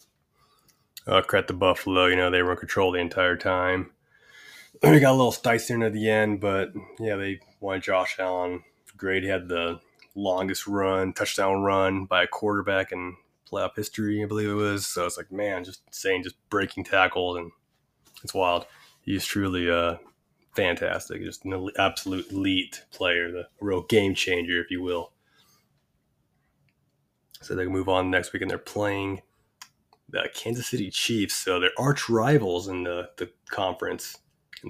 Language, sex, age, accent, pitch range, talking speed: English, male, 20-39, American, 90-105 Hz, 170 wpm